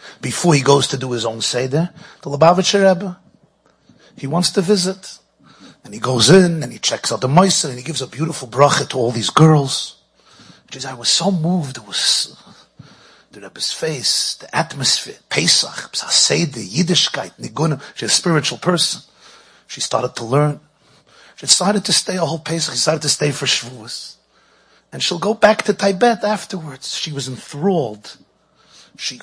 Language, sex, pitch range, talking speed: English, male, 130-185 Hz, 175 wpm